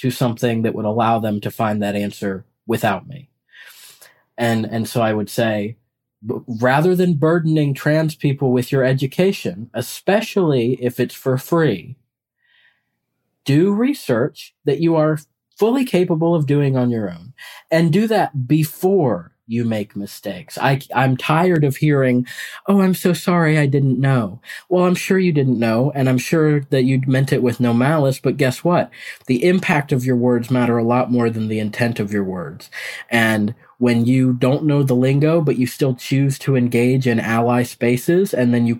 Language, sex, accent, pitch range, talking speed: English, male, American, 120-150 Hz, 180 wpm